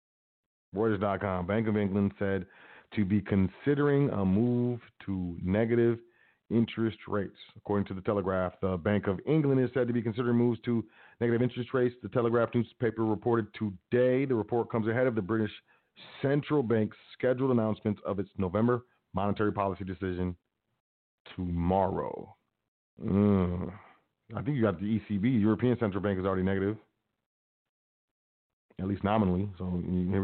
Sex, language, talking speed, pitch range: male, English, 145 wpm, 95-115 Hz